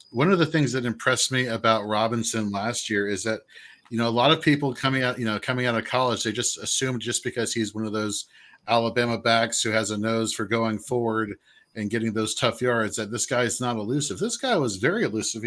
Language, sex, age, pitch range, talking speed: English, male, 40-59, 115-140 Hz, 235 wpm